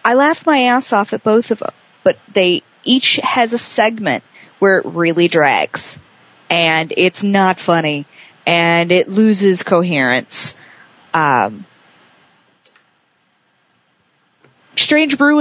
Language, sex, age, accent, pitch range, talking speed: English, female, 40-59, American, 175-235 Hz, 115 wpm